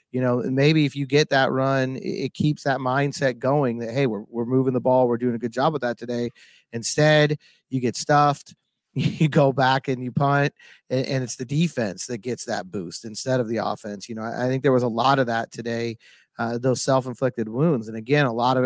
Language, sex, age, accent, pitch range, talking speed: English, male, 30-49, American, 120-145 Hz, 230 wpm